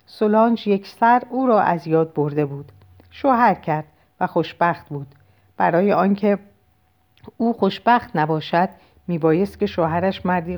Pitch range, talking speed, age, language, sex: 160-215 Hz, 130 wpm, 50-69, Persian, female